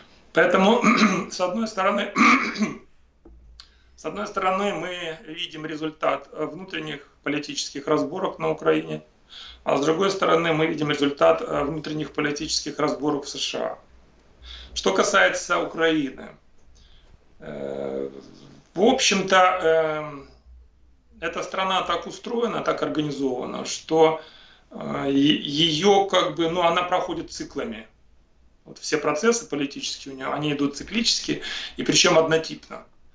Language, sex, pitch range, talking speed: Russian, male, 135-170 Hz, 110 wpm